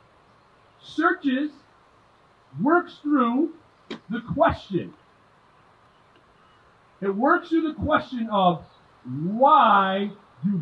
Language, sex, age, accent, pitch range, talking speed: English, male, 50-69, American, 185-280 Hz, 75 wpm